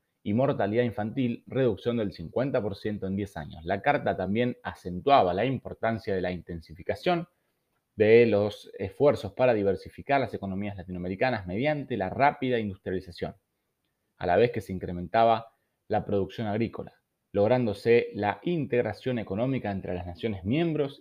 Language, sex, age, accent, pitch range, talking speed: Spanish, male, 30-49, Argentinian, 95-125 Hz, 135 wpm